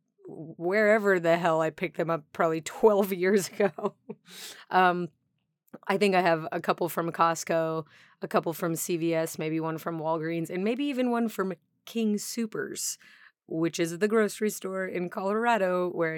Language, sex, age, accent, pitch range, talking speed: English, female, 30-49, American, 160-205 Hz, 160 wpm